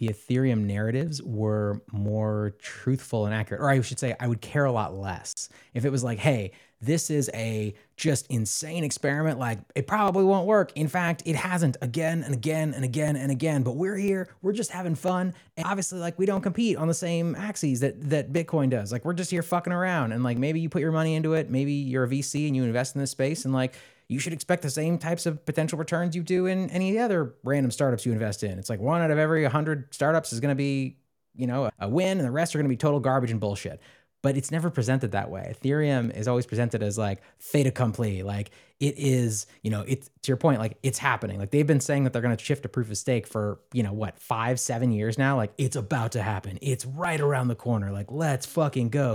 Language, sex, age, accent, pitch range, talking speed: English, male, 20-39, American, 115-160 Hz, 245 wpm